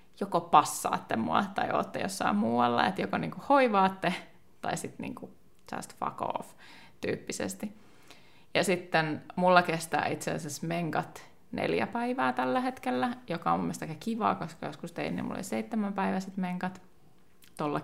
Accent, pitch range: native, 155-210 Hz